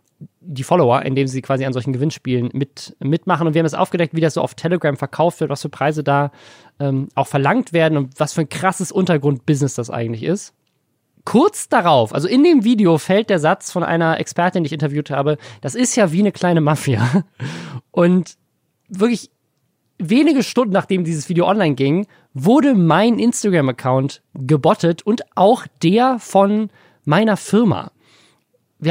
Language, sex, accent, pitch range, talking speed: German, male, German, 140-180 Hz, 170 wpm